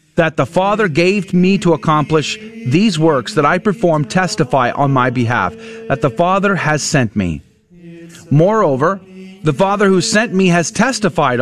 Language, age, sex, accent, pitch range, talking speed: English, 40-59, male, American, 140-190 Hz, 160 wpm